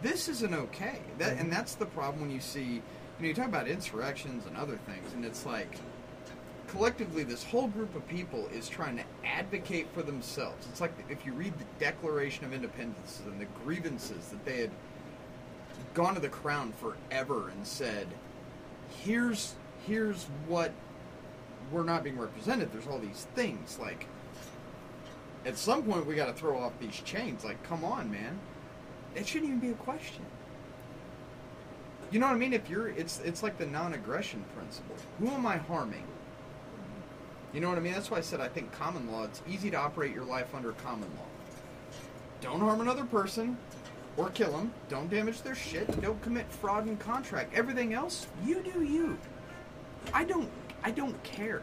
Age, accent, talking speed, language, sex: 30-49, American, 175 wpm, English, male